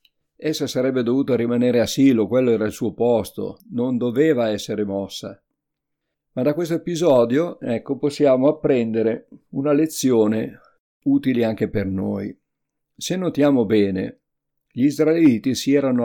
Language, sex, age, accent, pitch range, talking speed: Italian, male, 50-69, native, 110-140 Hz, 130 wpm